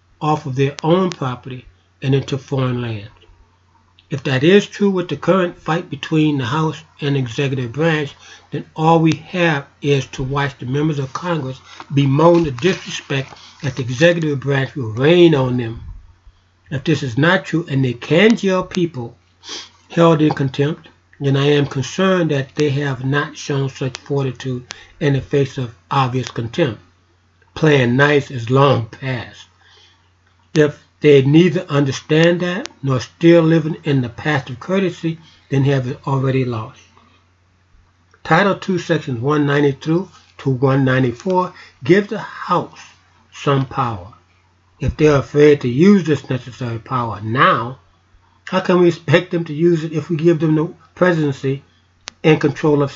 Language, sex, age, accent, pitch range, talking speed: English, male, 60-79, American, 120-160 Hz, 155 wpm